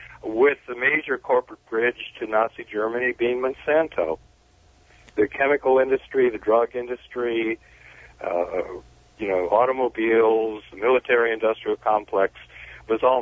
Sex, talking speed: male, 115 wpm